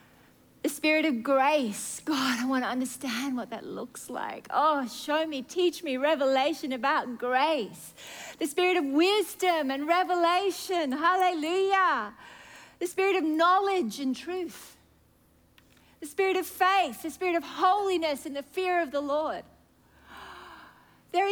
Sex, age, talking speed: female, 40-59, 135 wpm